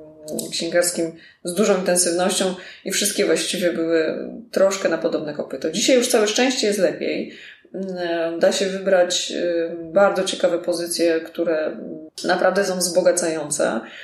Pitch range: 175-235 Hz